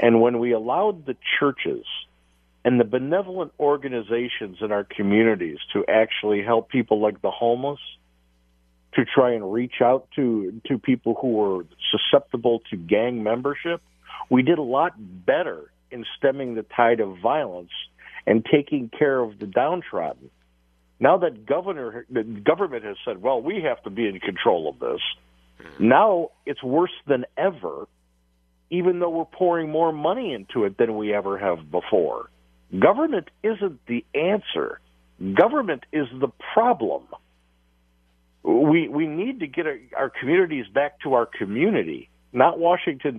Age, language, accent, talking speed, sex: 50-69, English, American, 150 wpm, male